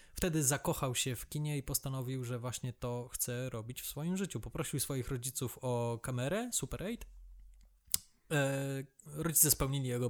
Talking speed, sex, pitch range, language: 150 wpm, male, 120-140 Hz, Polish